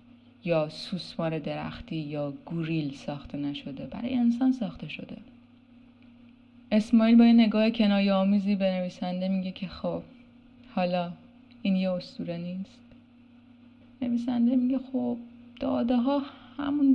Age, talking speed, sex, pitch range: 30-49, 115 wpm, female, 180-245 Hz